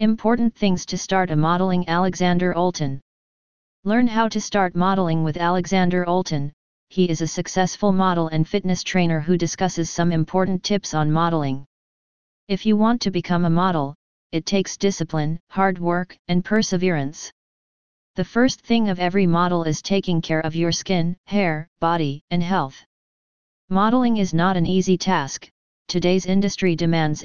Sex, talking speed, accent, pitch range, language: female, 155 wpm, American, 165-195 Hz, English